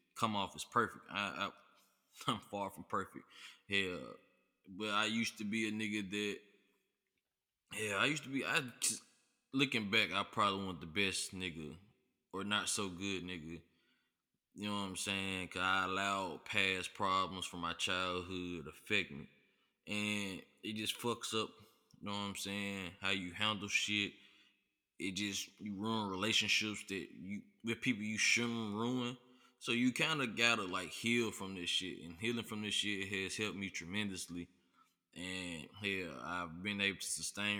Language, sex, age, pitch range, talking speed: English, male, 20-39, 95-105 Hz, 165 wpm